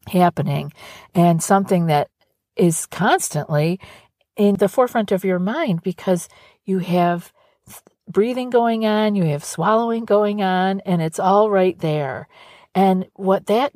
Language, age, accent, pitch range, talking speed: English, 50-69, American, 155-200 Hz, 135 wpm